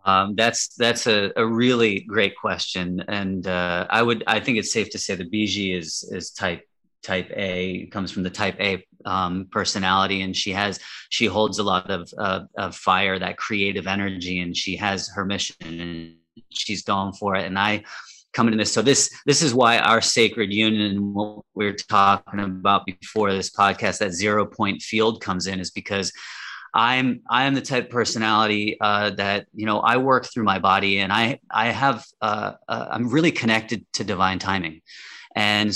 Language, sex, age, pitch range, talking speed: English, male, 30-49, 95-110 Hz, 195 wpm